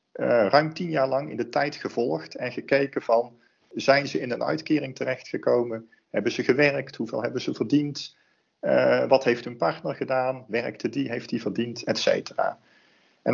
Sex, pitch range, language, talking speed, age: male, 115-145 Hz, Dutch, 175 wpm, 40-59